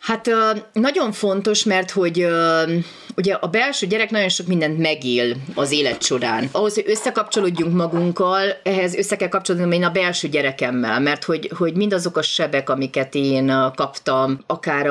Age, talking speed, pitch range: 30-49, 150 wpm, 145-185 Hz